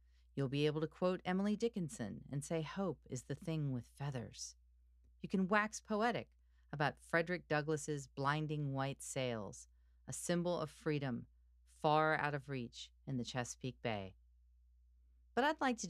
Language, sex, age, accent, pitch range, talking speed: English, female, 40-59, American, 115-160 Hz, 155 wpm